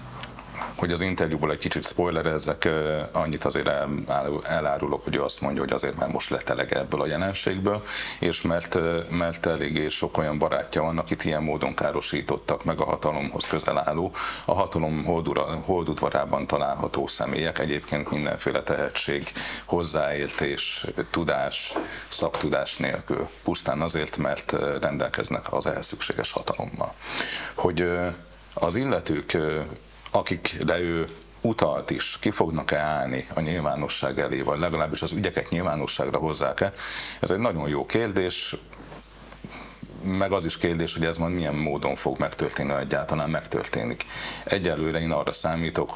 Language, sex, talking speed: Hungarian, male, 130 wpm